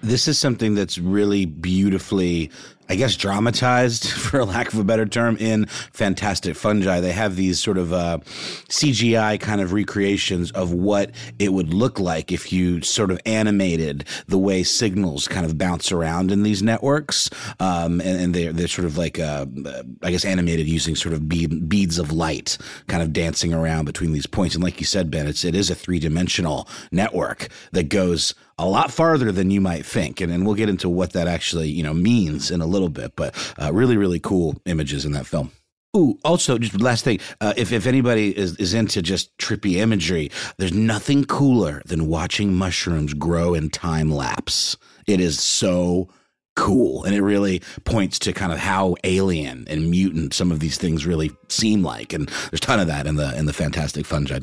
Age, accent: 30-49, American